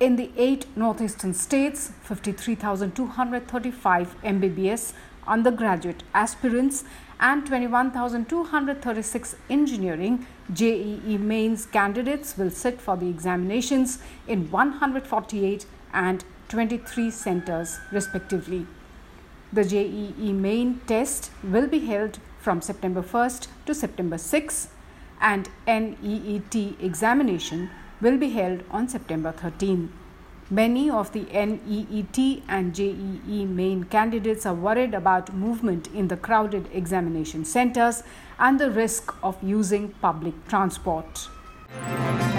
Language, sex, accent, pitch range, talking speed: English, female, Indian, 190-235 Hz, 100 wpm